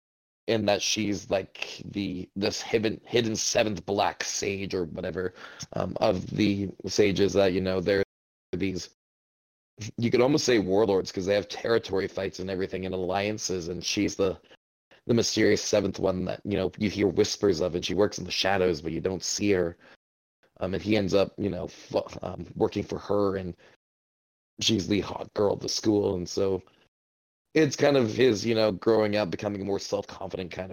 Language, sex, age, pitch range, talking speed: English, male, 20-39, 90-105 Hz, 185 wpm